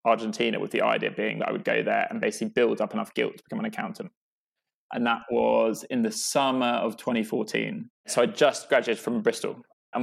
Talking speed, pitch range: 210 wpm, 115-165 Hz